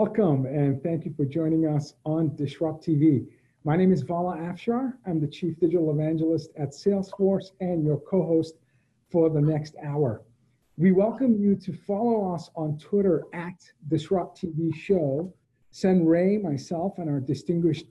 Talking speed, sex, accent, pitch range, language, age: 160 wpm, male, American, 155-190 Hz, English, 50-69